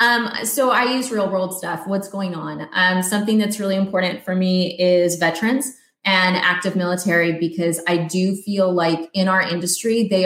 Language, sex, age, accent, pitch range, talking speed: English, female, 20-39, American, 175-220 Hz, 180 wpm